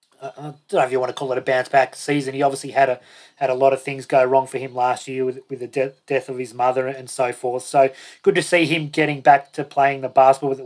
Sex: male